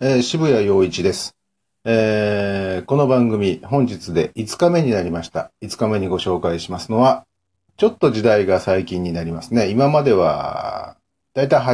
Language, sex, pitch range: Japanese, male, 100-140 Hz